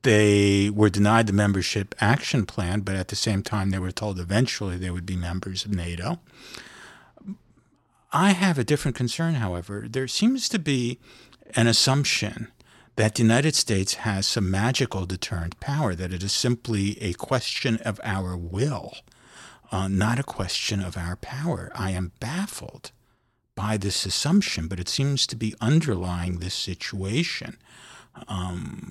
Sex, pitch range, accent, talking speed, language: male, 95-125 Hz, American, 155 wpm, English